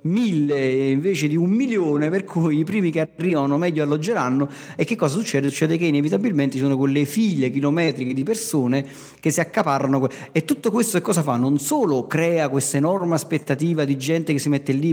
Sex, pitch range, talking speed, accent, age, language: male, 145-180 Hz, 190 wpm, native, 40-59, Italian